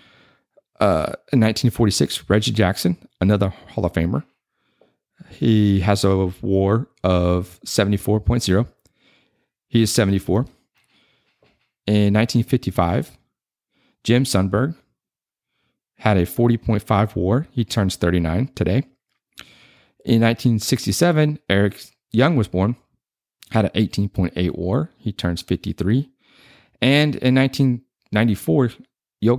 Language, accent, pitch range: English, American, 95-125 Hz